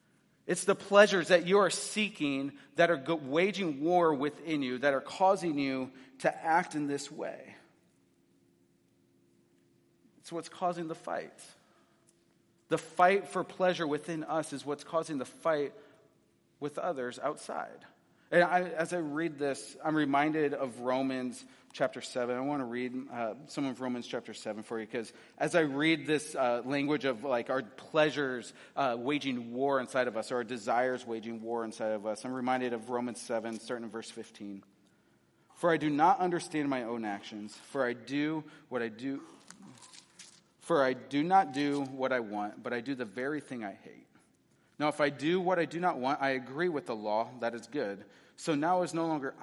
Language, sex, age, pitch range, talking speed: English, male, 30-49, 120-160 Hz, 180 wpm